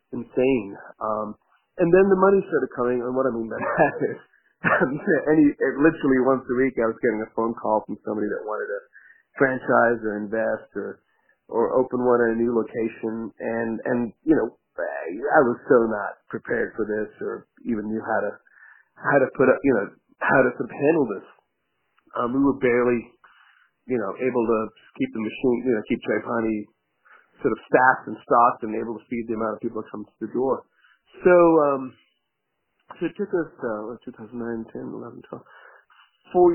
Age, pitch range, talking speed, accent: 40-59, 110-135 Hz, 190 wpm, American